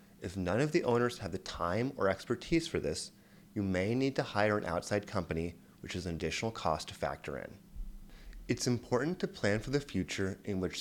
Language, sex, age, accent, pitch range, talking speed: English, male, 30-49, American, 95-135 Hz, 205 wpm